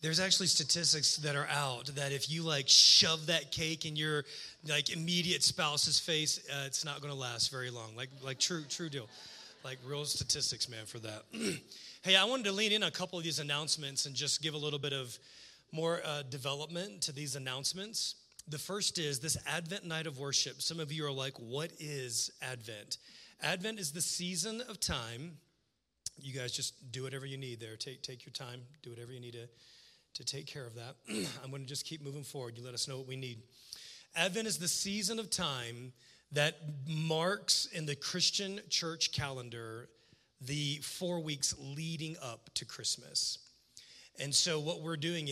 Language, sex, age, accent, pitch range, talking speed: English, male, 30-49, American, 130-160 Hz, 190 wpm